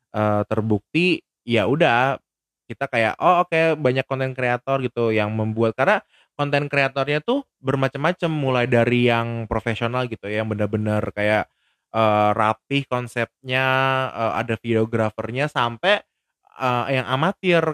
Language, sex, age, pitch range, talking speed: Indonesian, male, 20-39, 115-150 Hz, 130 wpm